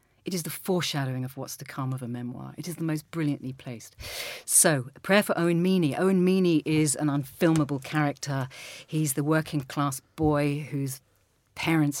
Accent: British